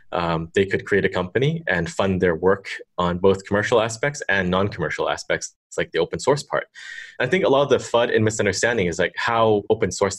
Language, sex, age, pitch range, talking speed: English, male, 20-39, 90-125 Hz, 225 wpm